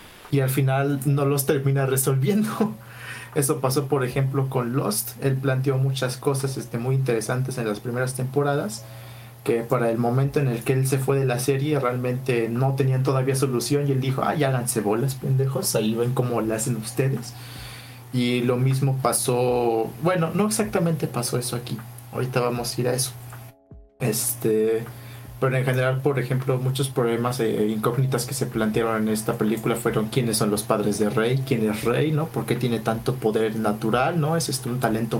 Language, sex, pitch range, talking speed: Spanish, male, 115-140 Hz, 190 wpm